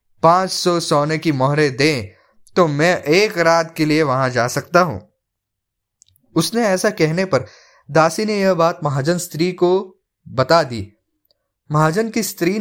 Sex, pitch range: male, 140-185 Hz